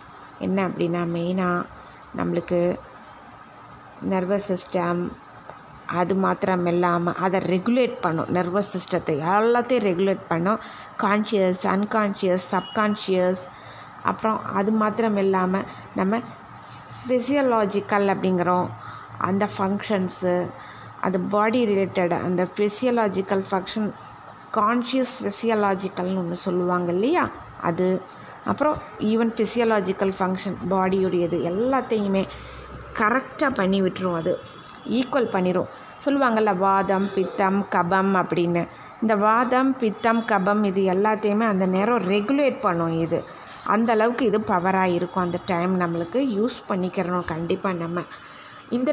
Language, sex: Tamil, female